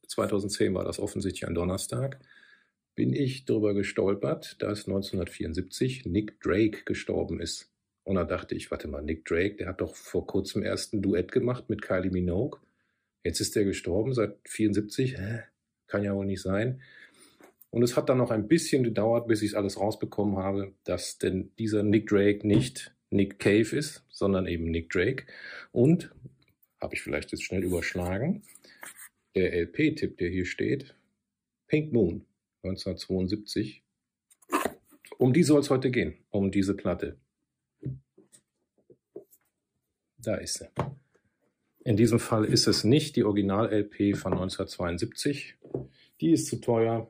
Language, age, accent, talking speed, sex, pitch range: German, 40-59, German, 145 wpm, male, 95-120 Hz